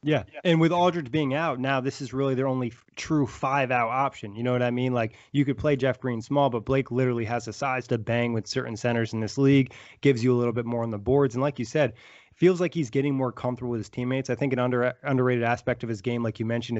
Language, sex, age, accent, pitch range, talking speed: English, male, 20-39, American, 115-140 Hz, 270 wpm